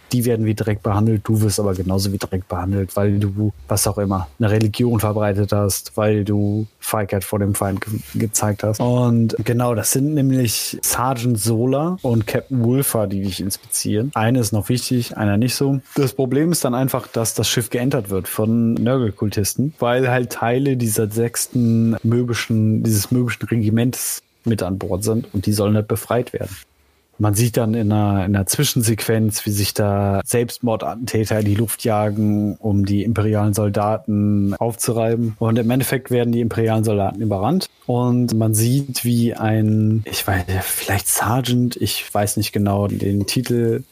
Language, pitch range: German, 105-120 Hz